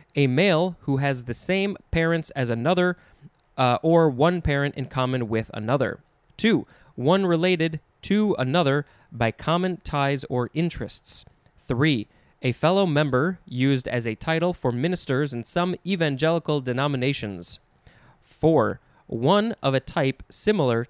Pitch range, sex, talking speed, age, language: 125-165 Hz, male, 135 wpm, 20-39, English